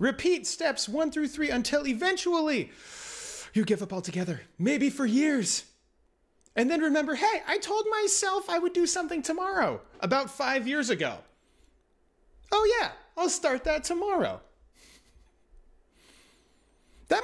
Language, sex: English, male